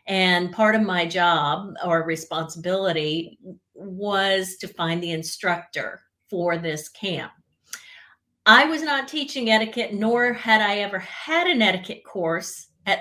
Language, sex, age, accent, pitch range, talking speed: English, female, 40-59, American, 170-215 Hz, 135 wpm